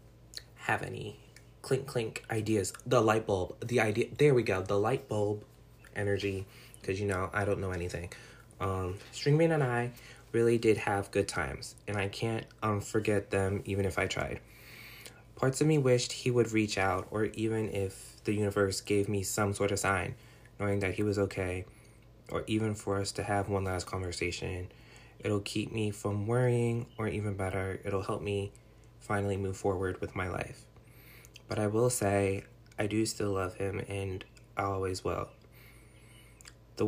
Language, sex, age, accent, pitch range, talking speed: English, male, 20-39, American, 100-120 Hz, 175 wpm